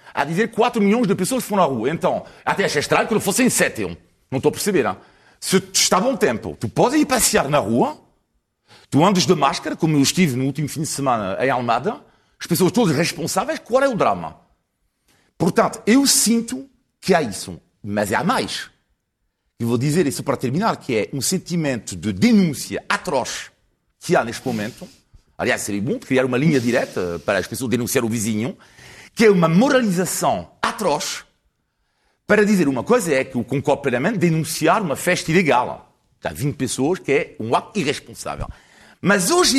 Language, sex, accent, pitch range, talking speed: Portuguese, male, French, 130-210 Hz, 185 wpm